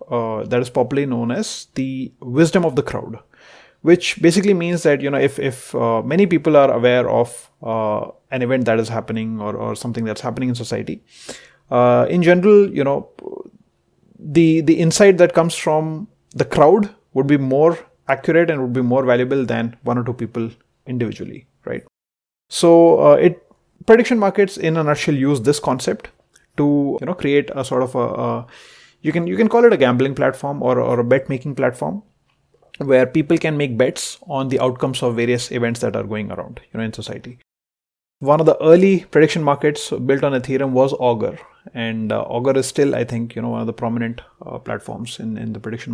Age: 30-49